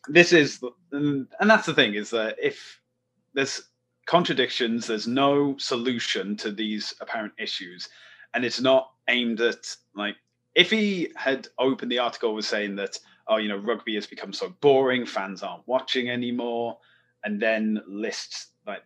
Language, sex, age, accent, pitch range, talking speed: English, male, 30-49, British, 105-130 Hz, 155 wpm